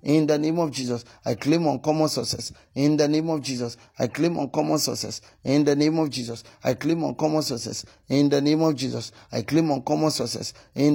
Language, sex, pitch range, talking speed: English, male, 125-155 Hz, 225 wpm